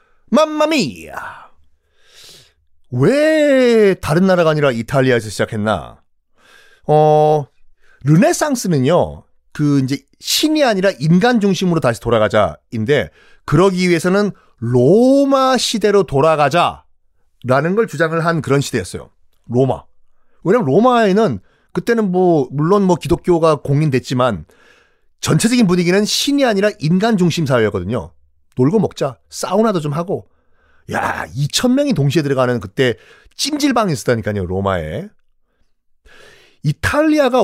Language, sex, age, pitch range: Korean, male, 40-59, 125-210 Hz